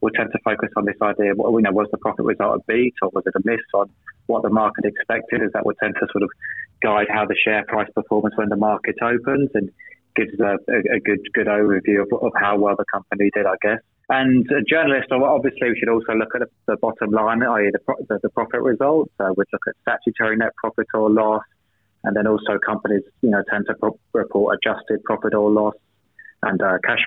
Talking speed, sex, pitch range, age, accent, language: 235 wpm, male, 105-115 Hz, 20-39, British, English